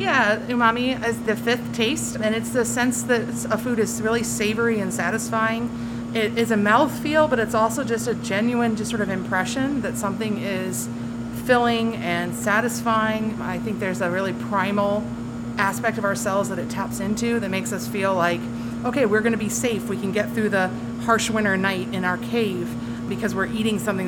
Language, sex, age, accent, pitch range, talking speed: English, female, 30-49, American, 190-235 Hz, 190 wpm